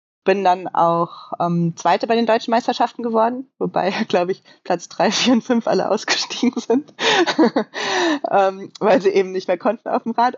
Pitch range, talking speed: 180-210 Hz, 180 wpm